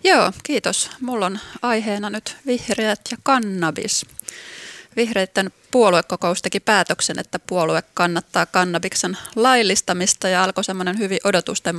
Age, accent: 20-39, native